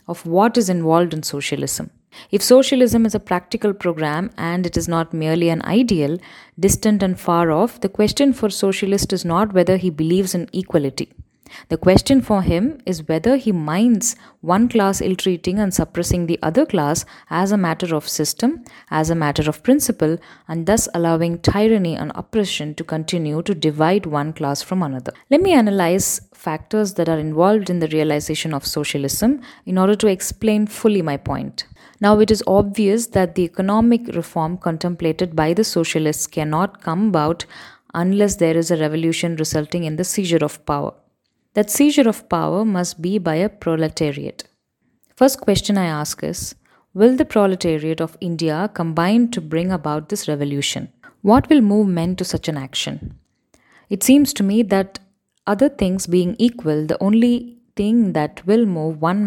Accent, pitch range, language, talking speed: native, 160-210 Hz, Tamil, 170 wpm